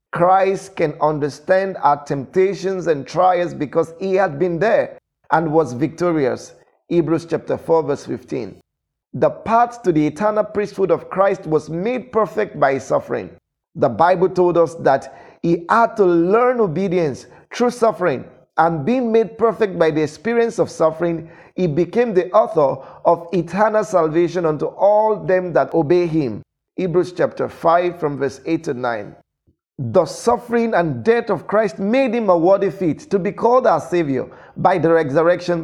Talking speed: 160 wpm